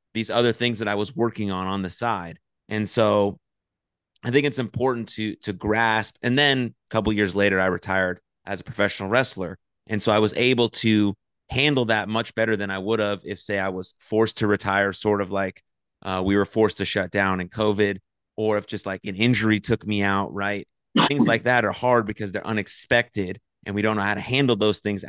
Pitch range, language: 100-115 Hz, English